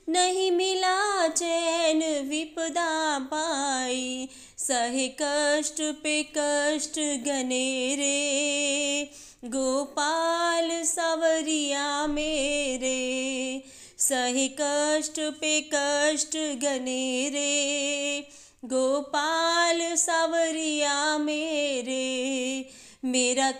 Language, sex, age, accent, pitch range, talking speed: Hindi, female, 20-39, native, 275-325 Hz, 60 wpm